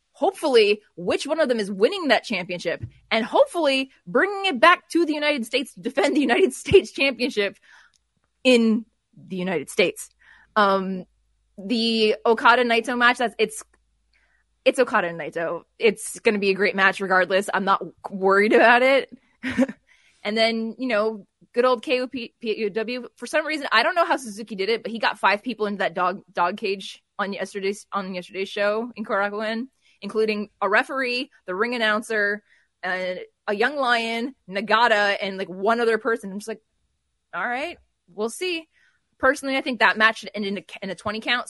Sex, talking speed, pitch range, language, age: female, 175 wpm, 195-255 Hz, English, 20-39